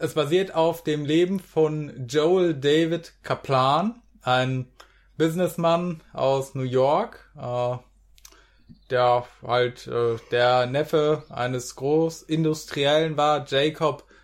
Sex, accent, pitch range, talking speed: male, German, 130-160 Hz, 95 wpm